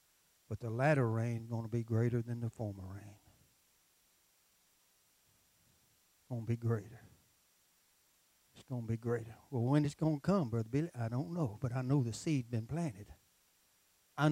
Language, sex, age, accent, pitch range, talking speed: English, male, 60-79, American, 105-140 Hz, 155 wpm